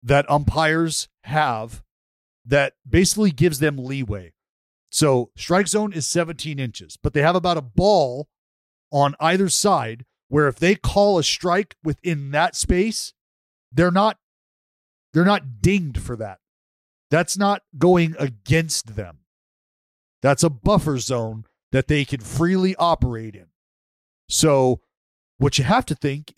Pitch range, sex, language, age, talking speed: 115-170 Hz, male, English, 40-59, 135 wpm